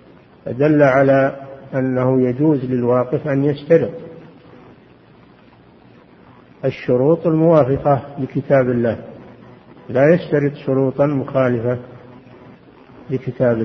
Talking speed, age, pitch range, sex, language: 70 wpm, 50-69, 125-150 Hz, male, Arabic